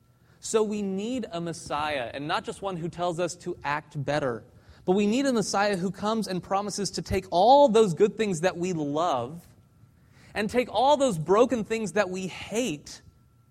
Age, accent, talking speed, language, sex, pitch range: 30-49, American, 185 wpm, English, male, 125-200 Hz